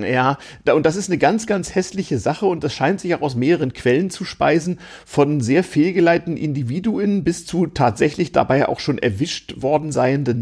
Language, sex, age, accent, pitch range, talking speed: German, male, 40-59, German, 125-165 Hz, 185 wpm